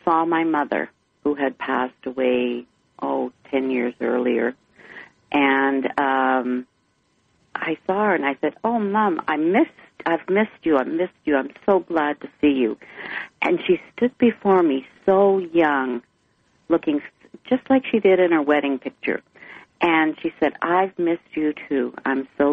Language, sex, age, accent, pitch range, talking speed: English, female, 50-69, American, 130-195 Hz, 160 wpm